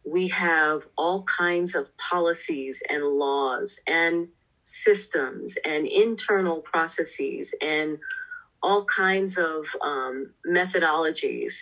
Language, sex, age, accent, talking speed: English, female, 40-59, American, 100 wpm